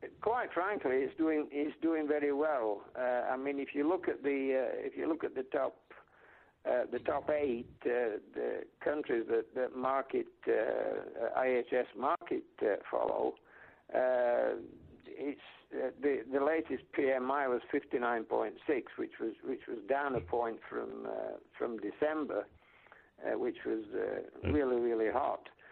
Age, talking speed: 60-79, 150 wpm